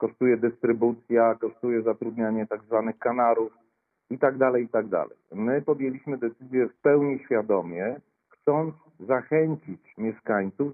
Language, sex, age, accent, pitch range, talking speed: Polish, male, 40-59, native, 110-135 Hz, 125 wpm